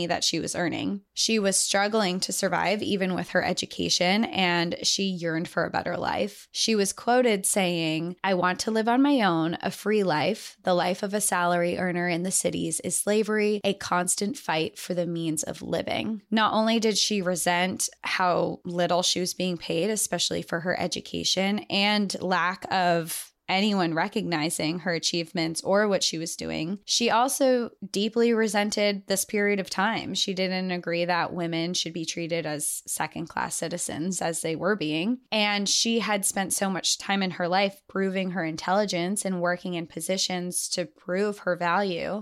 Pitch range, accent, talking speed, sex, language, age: 175-205 Hz, American, 175 wpm, female, English, 20-39